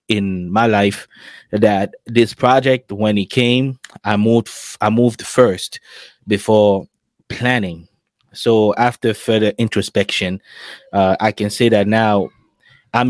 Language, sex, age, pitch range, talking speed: English, male, 20-39, 100-115 Hz, 130 wpm